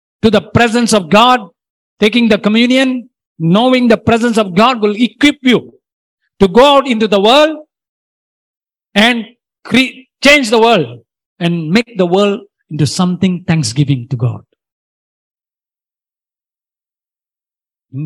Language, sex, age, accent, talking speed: Tamil, male, 50-69, native, 125 wpm